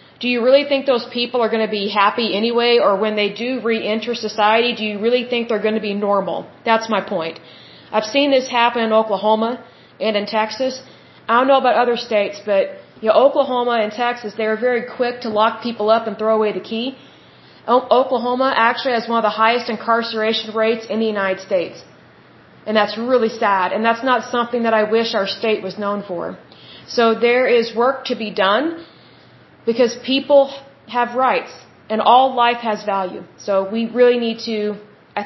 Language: Bengali